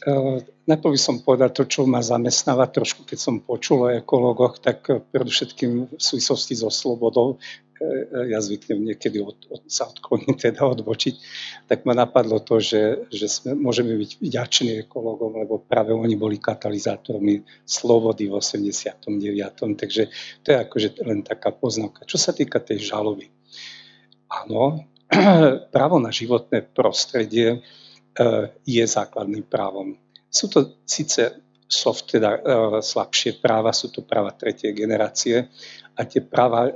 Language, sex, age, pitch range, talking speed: Slovak, male, 50-69, 105-120 Hz, 140 wpm